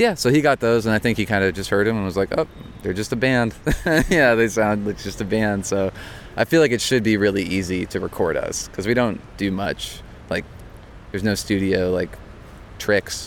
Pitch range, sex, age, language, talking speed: 95-110 Hz, male, 20-39, French, 235 wpm